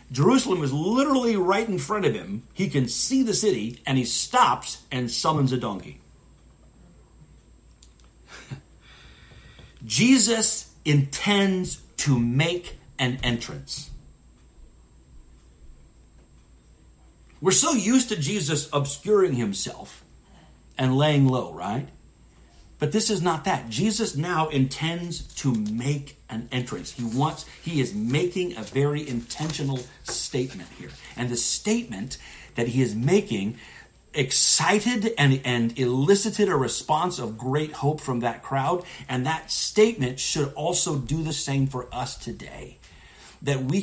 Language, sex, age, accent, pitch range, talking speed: English, male, 50-69, American, 120-175 Hz, 125 wpm